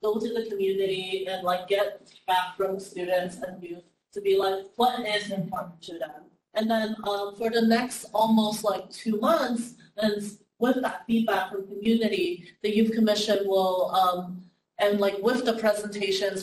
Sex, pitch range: female, 185-225 Hz